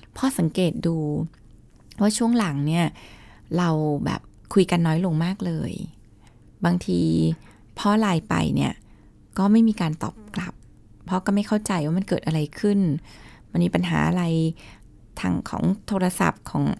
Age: 20-39